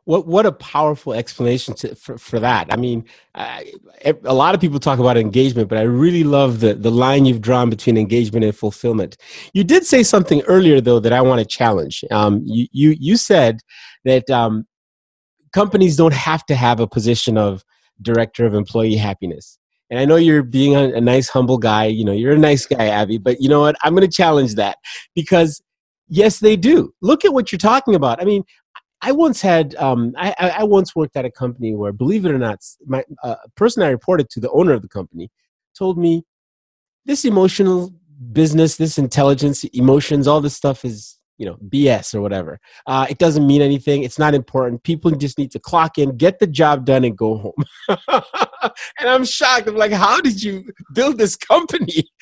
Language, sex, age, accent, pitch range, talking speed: English, male, 30-49, American, 120-185 Hz, 200 wpm